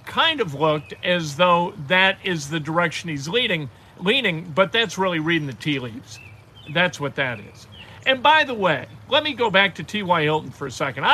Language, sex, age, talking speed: English, male, 50-69, 200 wpm